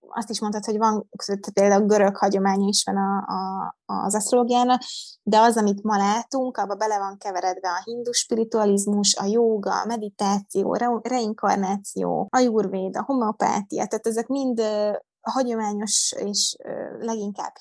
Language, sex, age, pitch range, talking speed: Hungarian, female, 20-39, 200-230 Hz, 145 wpm